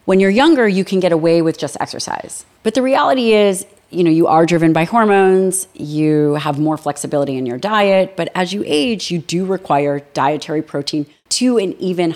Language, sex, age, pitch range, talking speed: English, female, 30-49, 155-190 Hz, 195 wpm